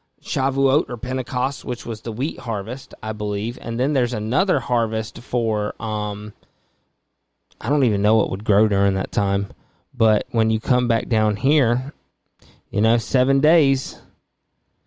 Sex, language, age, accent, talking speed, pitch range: male, English, 20-39, American, 155 wpm, 115-140 Hz